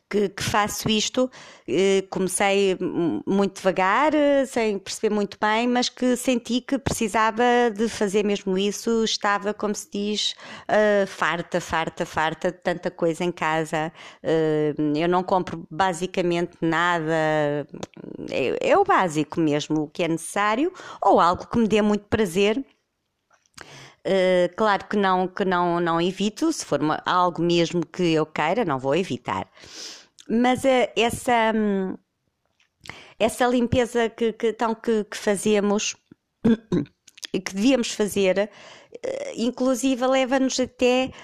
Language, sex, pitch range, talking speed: Portuguese, female, 190-245 Hz, 125 wpm